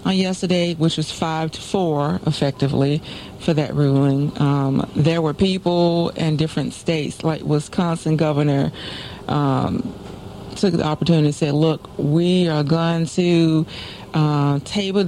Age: 40-59